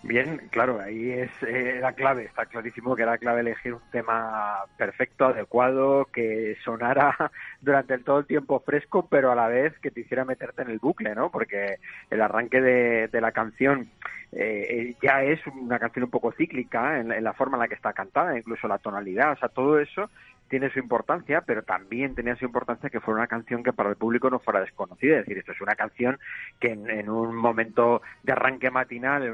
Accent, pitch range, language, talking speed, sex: Spanish, 115-135 Hz, Spanish, 205 wpm, male